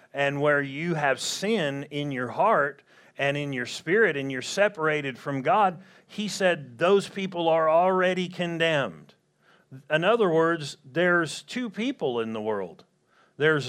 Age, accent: 40-59, American